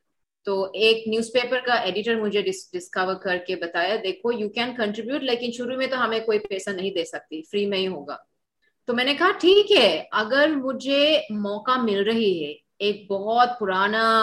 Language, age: Urdu, 30-49